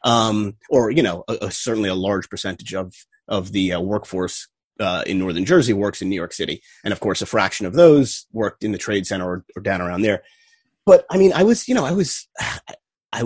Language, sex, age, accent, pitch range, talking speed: English, male, 30-49, American, 105-165 Hz, 230 wpm